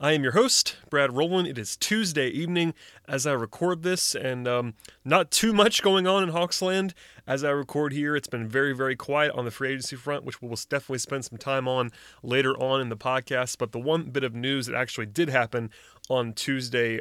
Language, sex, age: English, male, 30-49